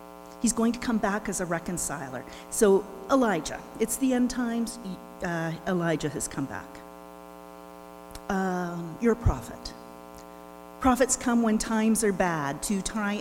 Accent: American